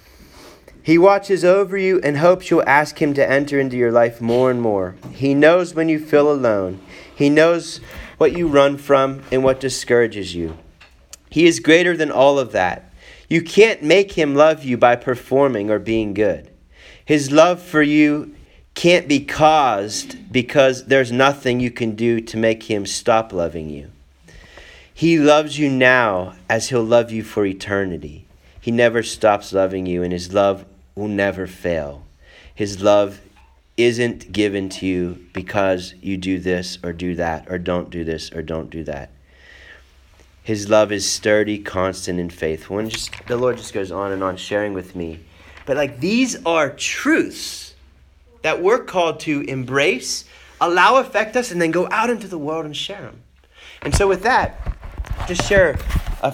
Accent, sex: American, male